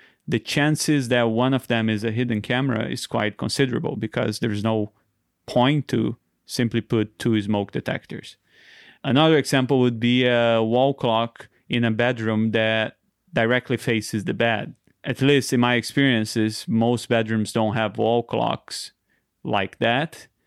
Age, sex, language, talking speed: 30-49, male, English, 150 wpm